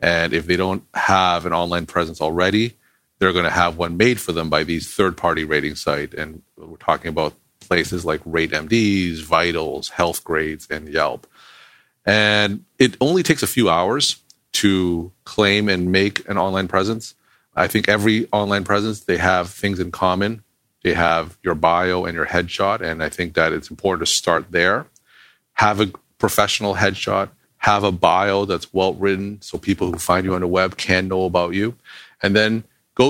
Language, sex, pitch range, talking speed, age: English, male, 85-105 Hz, 175 wpm, 40-59